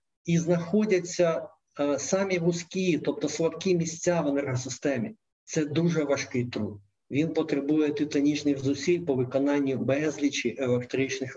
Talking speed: 110 wpm